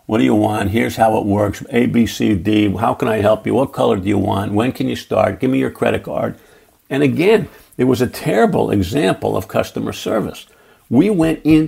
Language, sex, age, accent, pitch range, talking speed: English, male, 60-79, American, 105-155 Hz, 210 wpm